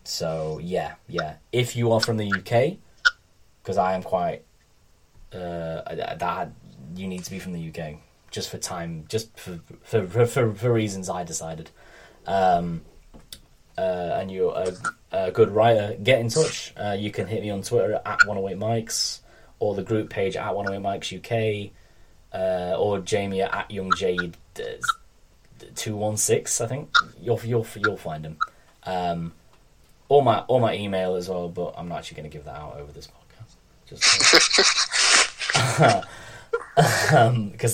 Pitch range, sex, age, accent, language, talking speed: 90-115 Hz, male, 10-29, British, English, 165 wpm